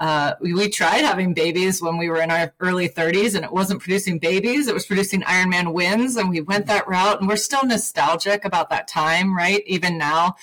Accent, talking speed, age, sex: American, 225 wpm, 30-49, female